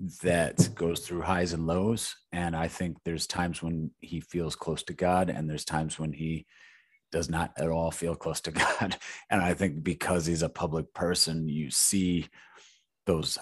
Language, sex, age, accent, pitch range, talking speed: English, male, 30-49, American, 80-90 Hz, 185 wpm